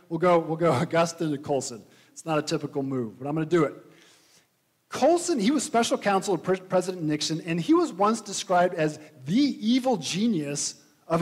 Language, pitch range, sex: English, 150-210 Hz, male